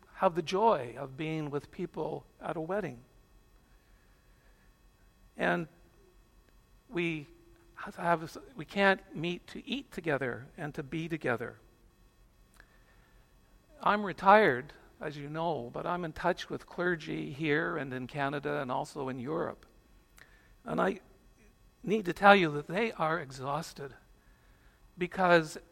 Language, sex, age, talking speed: English, male, 60-79, 125 wpm